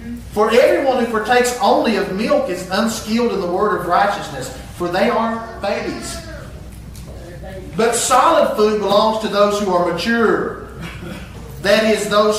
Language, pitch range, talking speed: English, 205-255 Hz, 145 wpm